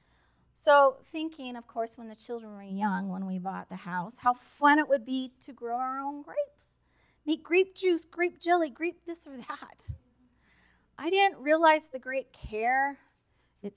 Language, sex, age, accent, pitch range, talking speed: English, female, 40-59, American, 205-285 Hz, 175 wpm